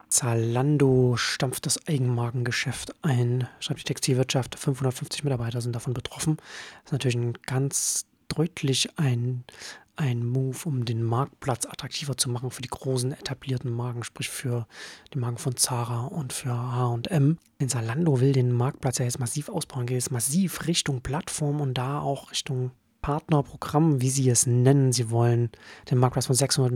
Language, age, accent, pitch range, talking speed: German, 30-49, German, 120-135 Hz, 155 wpm